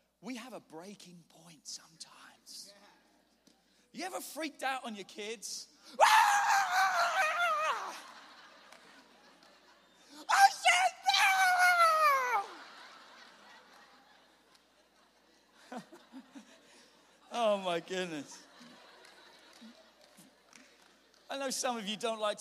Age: 40-59